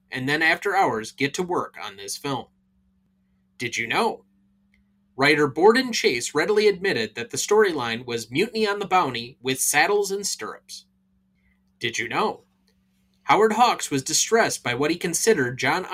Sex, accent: male, American